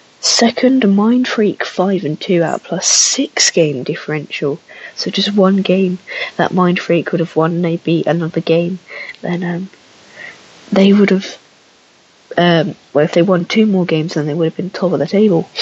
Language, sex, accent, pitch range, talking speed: English, female, British, 165-205 Hz, 175 wpm